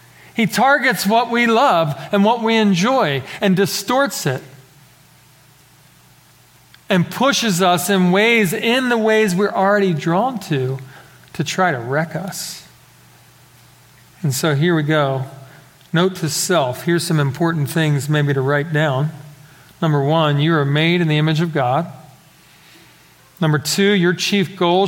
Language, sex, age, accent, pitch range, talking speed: English, male, 40-59, American, 145-195 Hz, 145 wpm